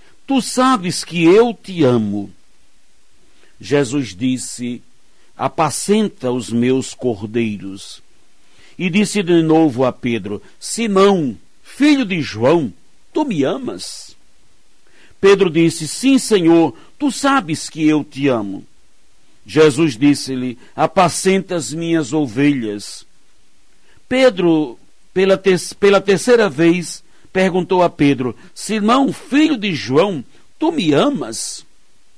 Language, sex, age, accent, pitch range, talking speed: Portuguese, male, 60-79, Brazilian, 130-200 Hz, 105 wpm